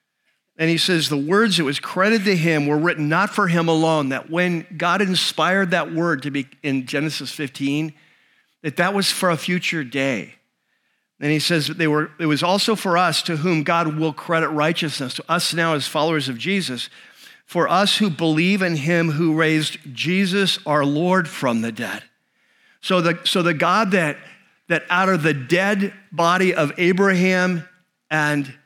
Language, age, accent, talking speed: English, 50-69, American, 180 wpm